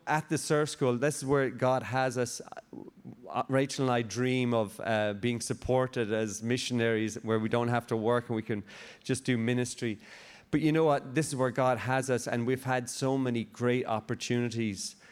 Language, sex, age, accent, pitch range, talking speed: English, male, 30-49, Irish, 110-130 Hz, 195 wpm